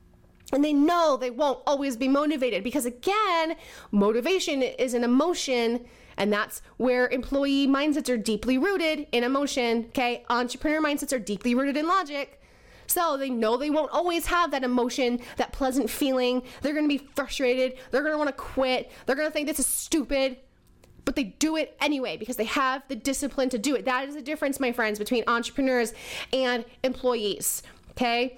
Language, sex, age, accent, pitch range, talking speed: English, female, 20-39, American, 250-295 Hz, 180 wpm